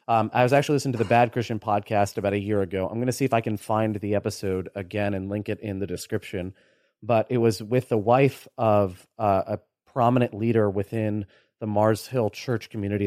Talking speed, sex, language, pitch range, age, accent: 220 wpm, male, English, 110-135 Hz, 30-49, American